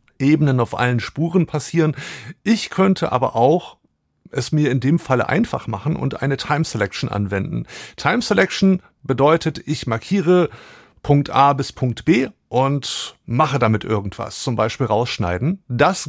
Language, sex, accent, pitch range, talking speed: German, male, German, 120-155 Hz, 145 wpm